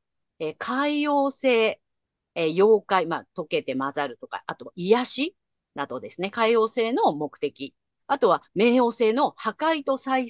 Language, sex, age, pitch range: Japanese, female, 40-59, 190-320 Hz